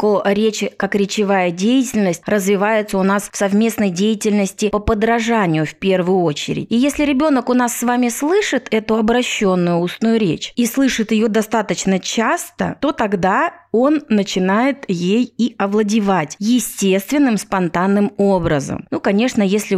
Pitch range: 200-245 Hz